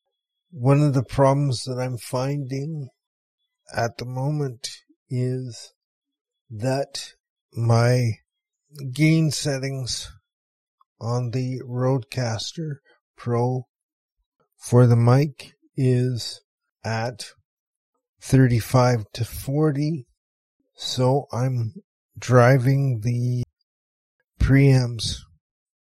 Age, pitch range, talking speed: 50-69, 120-140 Hz, 75 wpm